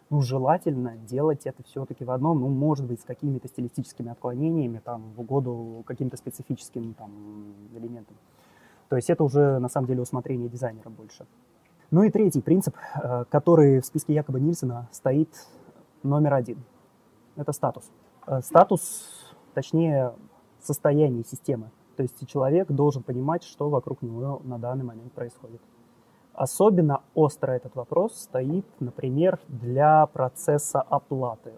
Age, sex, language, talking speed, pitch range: 20-39, male, Russian, 135 wpm, 125-150 Hz